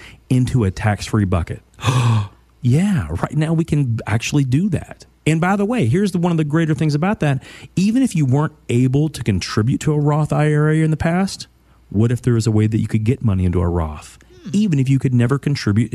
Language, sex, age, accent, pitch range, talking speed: English, male, 40-59, American, 105-150 Hz, 220 wpm